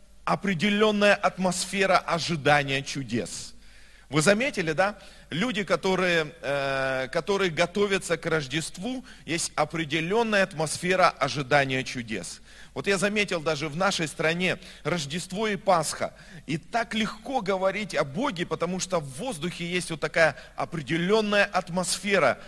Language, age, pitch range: Russian, 40-59, 160-210 Hz